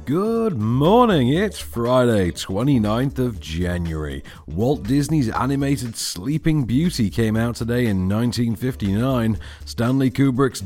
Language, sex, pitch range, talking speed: English, male, 90-140 Hz, 105 wpm